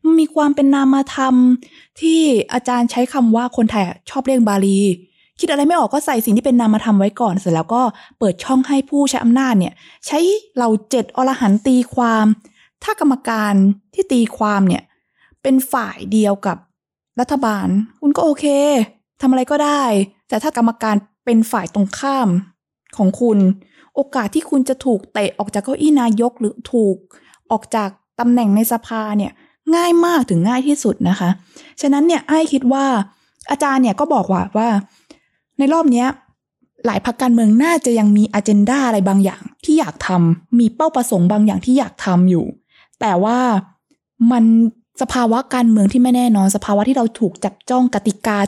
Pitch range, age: 205-270 Hz, 20-39